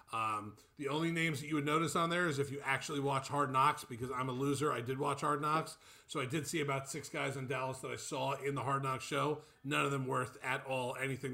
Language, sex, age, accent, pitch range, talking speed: English, male, 40-59, American, 135-170 Hz, 265 wpm